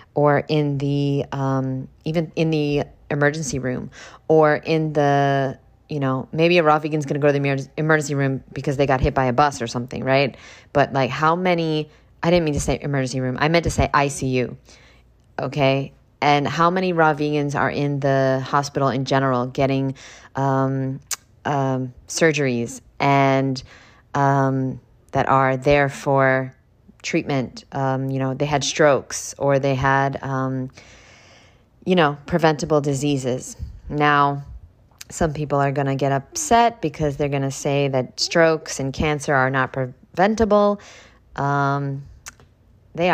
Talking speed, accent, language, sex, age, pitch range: 155 wpm, American, English, female, 20-39, 130-150 Hz